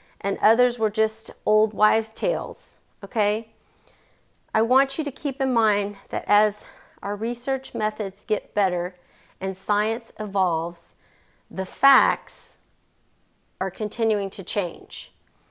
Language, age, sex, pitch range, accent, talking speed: English, 40-59, female, 200-250 Hz, American, 120 wpm